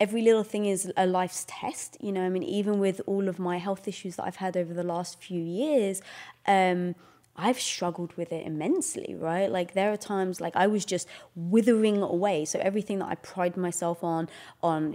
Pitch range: 175-210 Hz